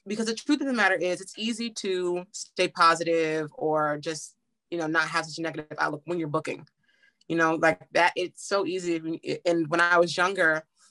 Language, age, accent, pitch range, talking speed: English, 20-39, American, 160-195 Hz, 205 wpm